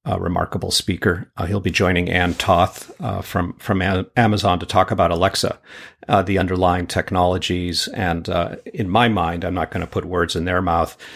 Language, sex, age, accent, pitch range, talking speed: English, male, 50-69, American, 85-100 Hz, 190 wpm